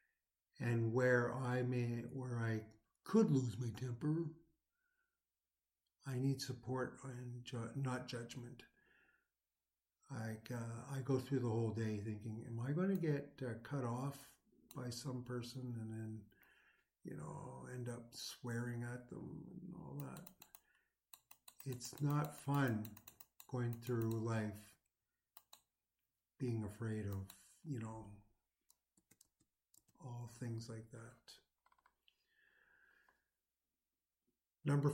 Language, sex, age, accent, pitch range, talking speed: English, male, 60-79, American, 115-190 Hz, 110 wpm